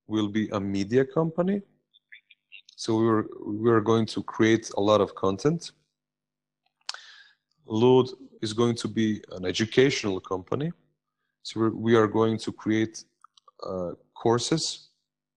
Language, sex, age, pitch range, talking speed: Croatian, male, 30-49, 105-125 Hz, 130 wpm